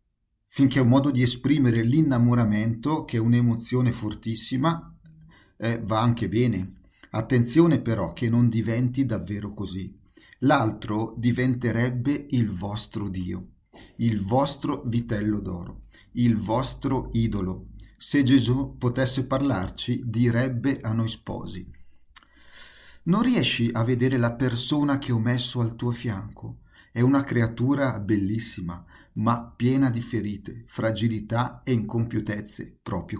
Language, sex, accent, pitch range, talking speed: Italian, male, native, 110-130 Hz, 120 wpm